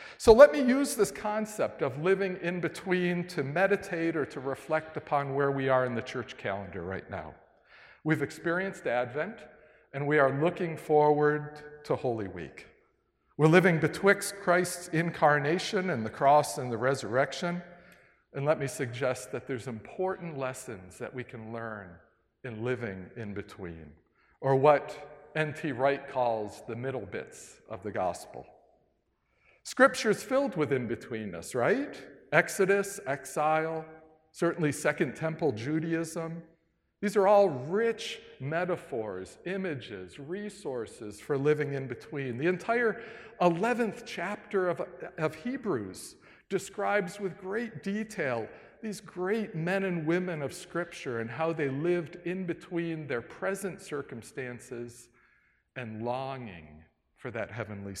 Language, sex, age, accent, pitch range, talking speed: English, male, 50-69, American, 130-185 Hz, 130 wpm